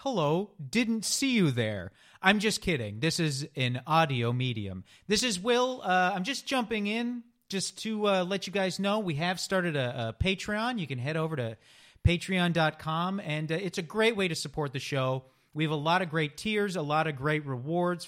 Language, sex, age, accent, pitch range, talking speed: English, male, 40-59, American, 135-195 Hz, 205 wpm